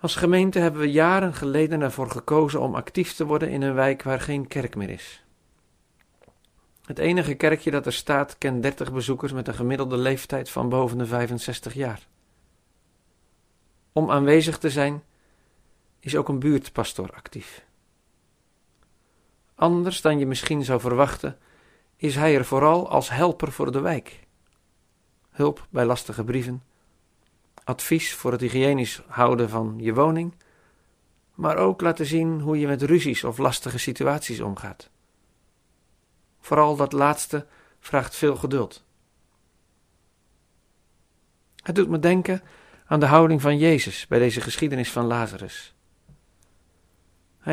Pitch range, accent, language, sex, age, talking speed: 100-155 Hz, Dutch, Dutch, male, 50-69, 135 wpm